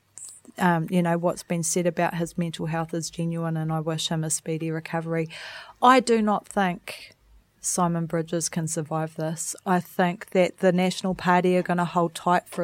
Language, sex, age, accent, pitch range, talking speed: English, female, 30-49, Australian, 165-180 Hz, 190 wpm